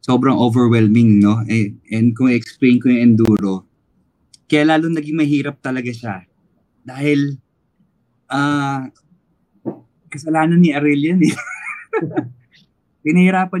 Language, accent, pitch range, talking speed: English, Filipino, 115-155 Hz, 95 wpm